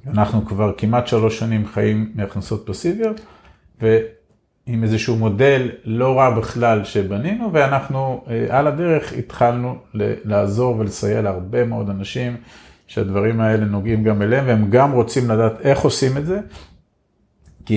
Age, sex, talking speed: 40-59, male, 135 wpm